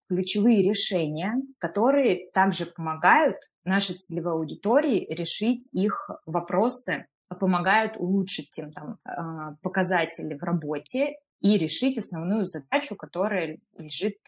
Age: 20-39